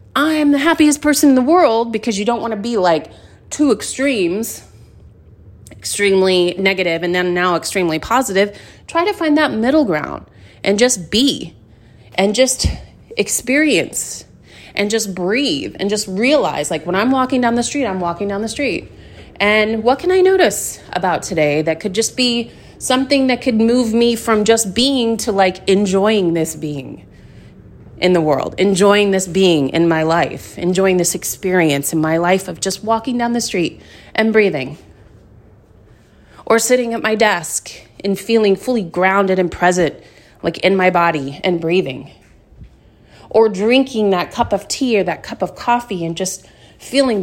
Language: English